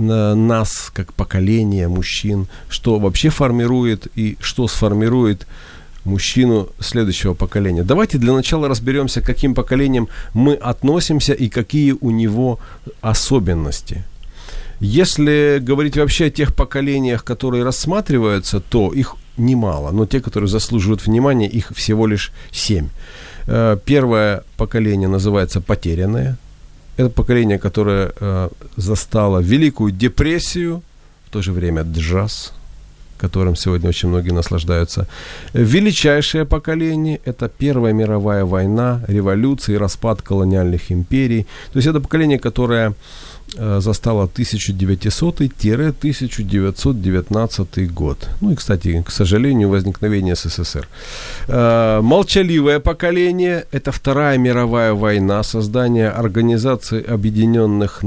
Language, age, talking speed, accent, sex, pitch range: Ukrainian, 40-59, 105 wpm, native, male, 95-130 Hz